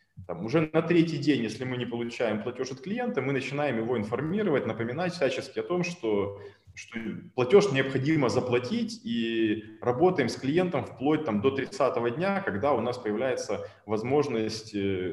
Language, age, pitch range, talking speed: Russian, 20-39, 115-175 Hz, 155 wpm